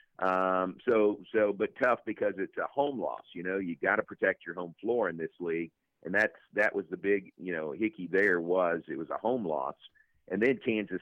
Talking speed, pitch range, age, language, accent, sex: 225 wpm, 95-110 Hz, 50-69, English, American, male